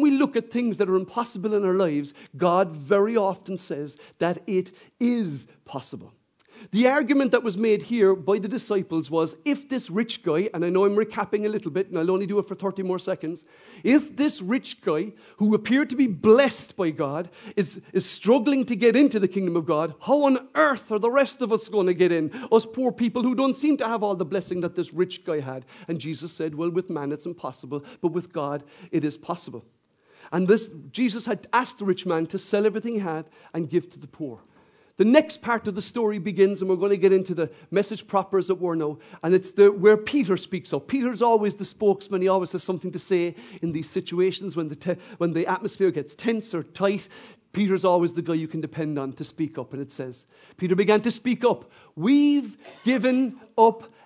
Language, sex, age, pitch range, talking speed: English, male, 50-69, 170-225 Hz, 225 wpm